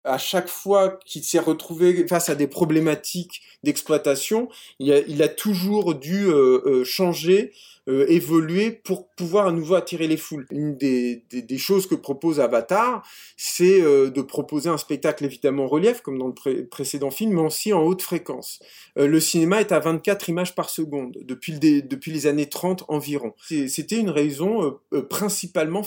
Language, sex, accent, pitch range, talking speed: French, male, French, 150-195 Hz, 180 wpm